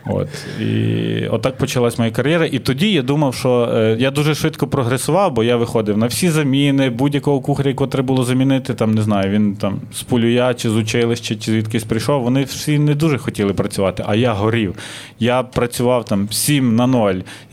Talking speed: 190 wpm